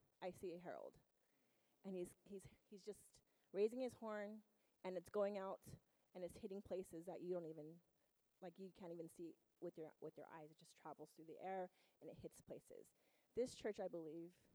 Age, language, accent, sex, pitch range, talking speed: 30-49, English, American, female, 185-245 Hz, 200 wpm